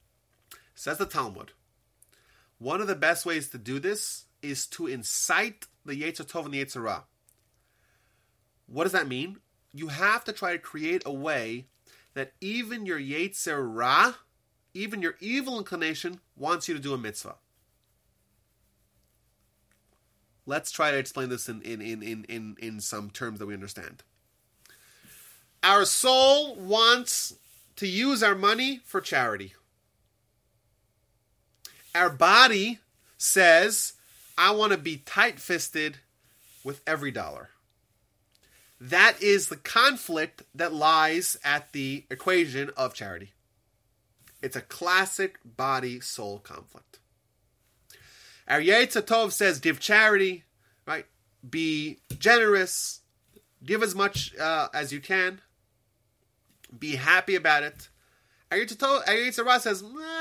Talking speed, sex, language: 120 wpm, male, English